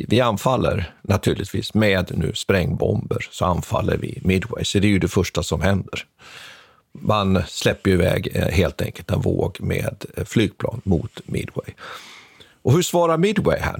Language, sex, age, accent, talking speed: Swedish, male, 50-69, native, 150 wpm